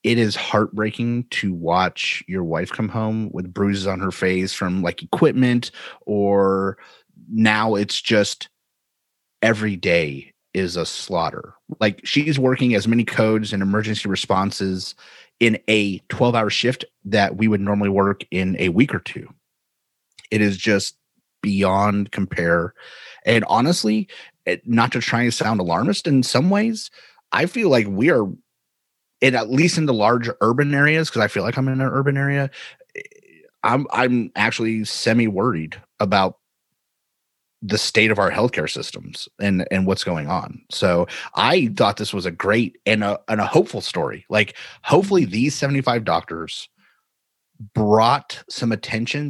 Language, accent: English, American